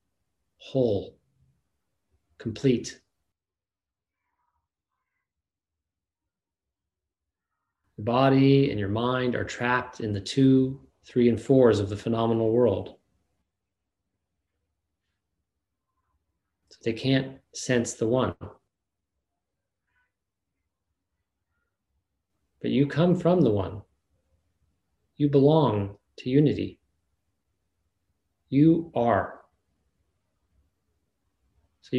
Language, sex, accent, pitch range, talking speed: English, male, American, 90-125 Hz, 70 wpm